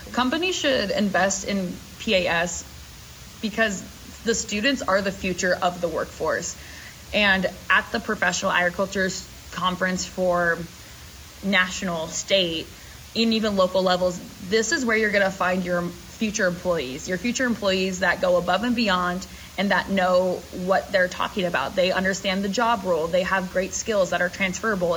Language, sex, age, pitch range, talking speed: English, female, 20-39, 180-215 Hz, 155 wpm